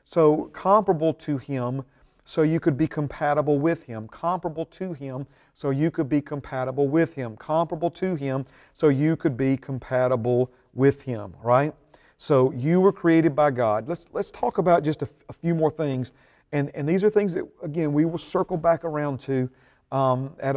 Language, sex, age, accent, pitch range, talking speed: English, male, 40-59, American, 125-155 Hz, 185 wpm